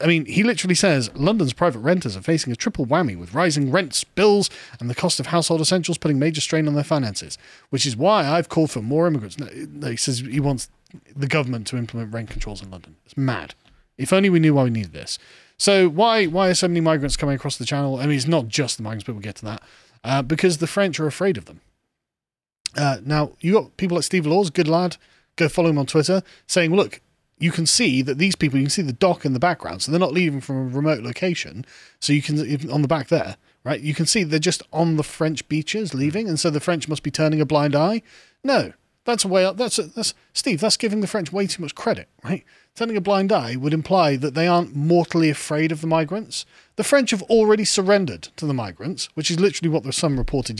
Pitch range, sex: 140-185 Hz, male